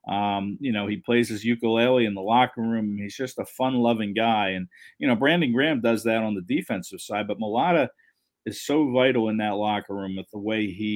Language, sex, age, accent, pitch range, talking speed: English, male, 40-59, American, 105-125 Hz, 220 wpm